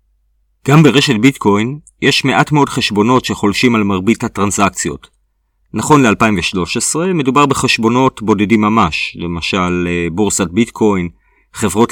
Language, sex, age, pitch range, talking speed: Hebrew, male, 40-59, 95-130 Hz, 105 wpm